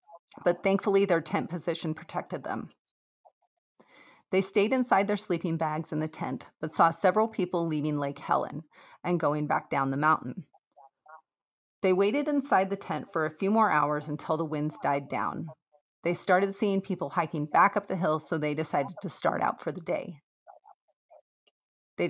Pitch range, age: 155-195 Hz, 30-49